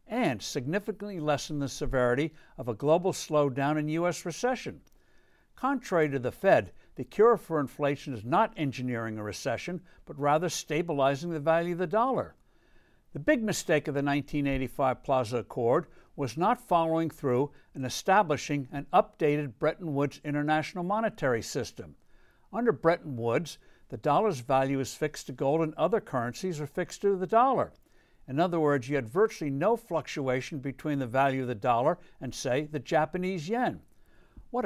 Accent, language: American, English